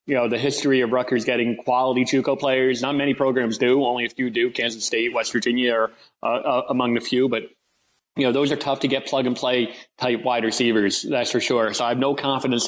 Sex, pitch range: male, 115-130 Hz